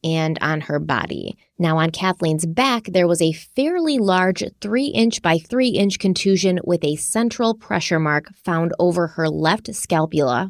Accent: American